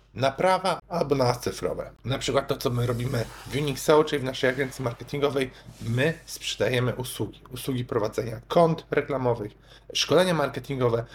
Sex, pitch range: male, 120-145 Hz